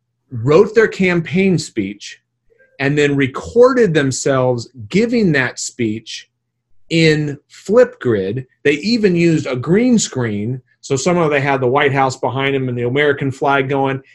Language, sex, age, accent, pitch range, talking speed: English, male, 30-49, American, 125-165 Hz, 140 wpm